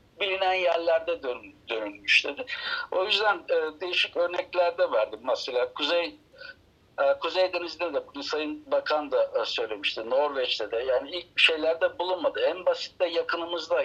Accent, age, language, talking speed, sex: native, 60-79, Turkish, 125 wpm, male